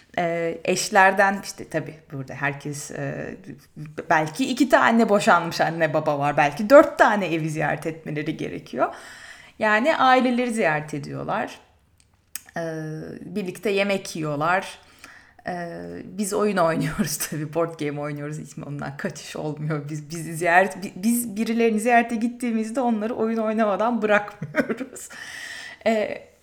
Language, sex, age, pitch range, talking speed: Turkish, female, 30-49, 160-230 Hz, 115 wpm